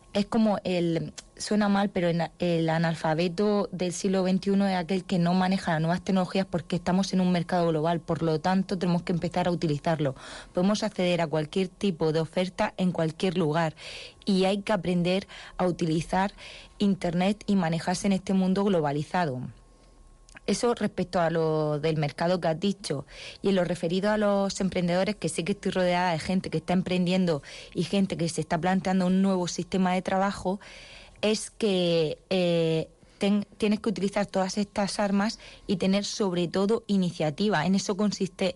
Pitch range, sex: 170-200 Hz, female